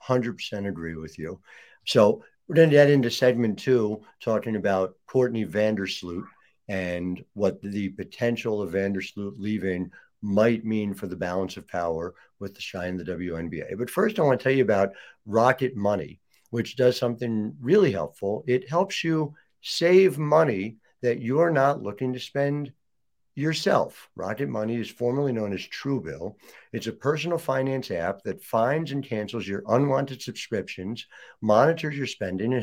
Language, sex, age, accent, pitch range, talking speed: English, male, 60-79, American, 105-145 Hz, 155 wpm